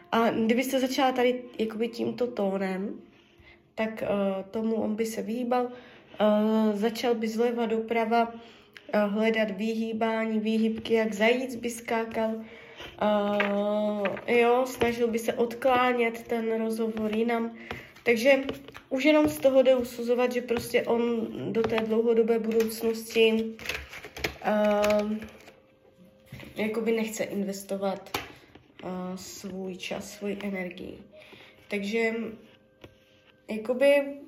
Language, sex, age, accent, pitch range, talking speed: Czech, female, 20-39, native, 210-245 Hz, 105 wpm